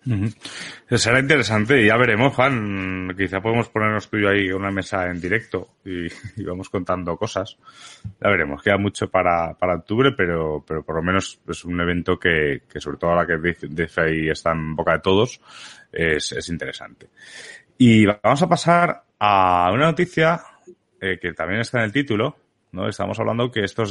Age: 30-49